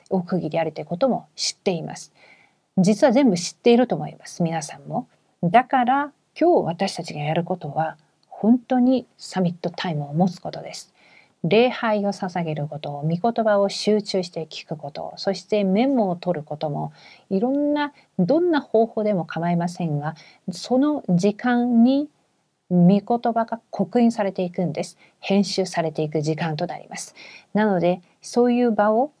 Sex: female